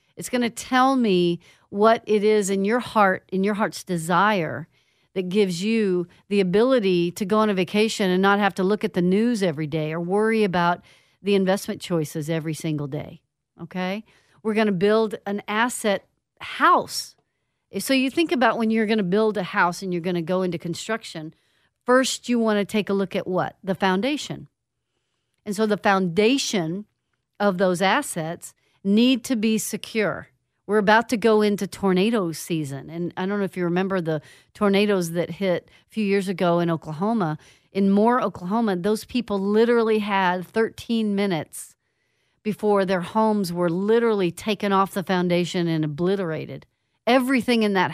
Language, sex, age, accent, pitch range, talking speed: English, female, 50-69, American, 175-215 Hz, 175 wpm